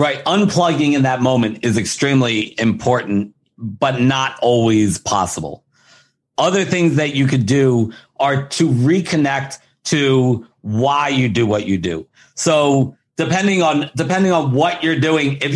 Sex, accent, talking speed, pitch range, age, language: male, American, 145 wpm, 125-160 Hz, 50-69, English